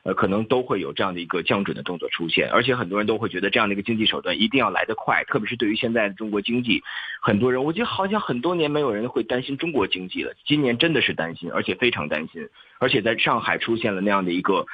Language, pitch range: Chinese, 100-125 Hz